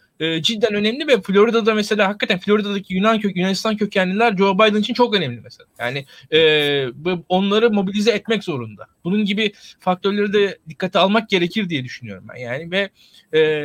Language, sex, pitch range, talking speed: Turkish, male, 165-210 Hz, 160 wpm